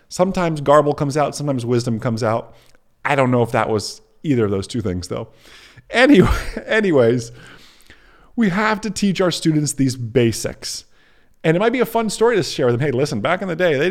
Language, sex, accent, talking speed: English, male, American, 205 wpm